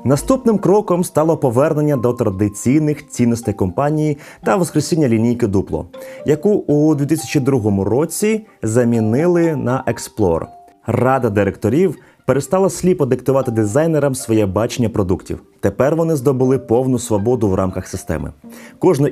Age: 30-49